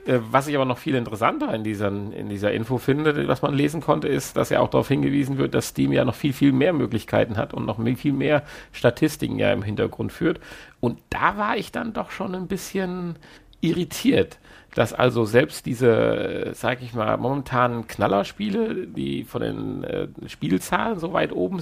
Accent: German